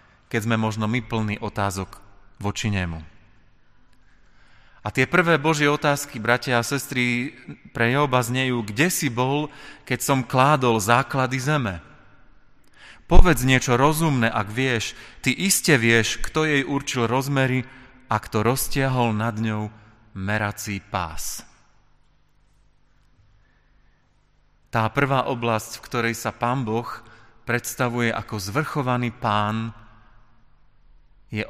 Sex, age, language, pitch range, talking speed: male, 30-49, Slovak, 110-135 Hz, 115 wpm